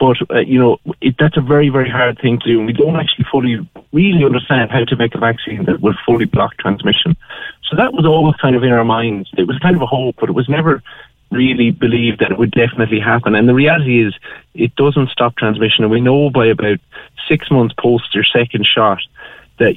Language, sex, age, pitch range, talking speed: English, male, 30-49, 115-140 Hz, 230 wpm